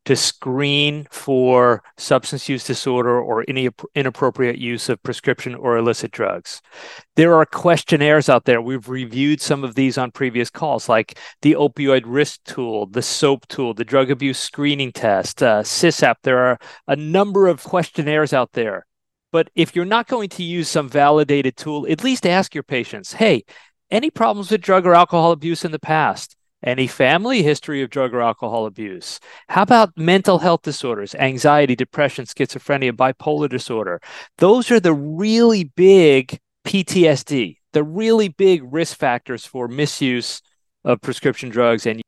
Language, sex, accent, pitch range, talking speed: English, male, American, 125-165 Hz, 160 wpm